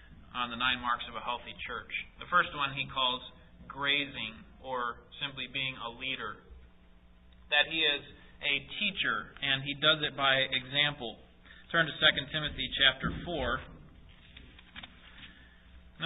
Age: 30-49